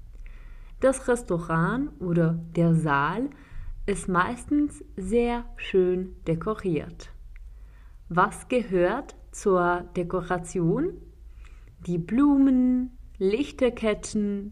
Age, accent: 30-49, German